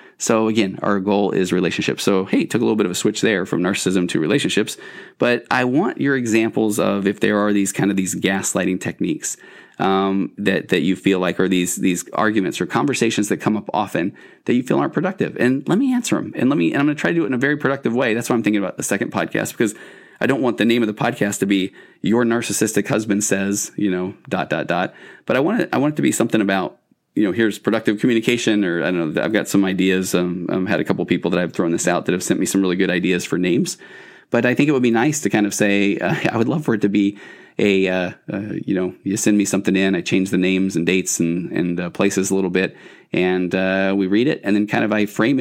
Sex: male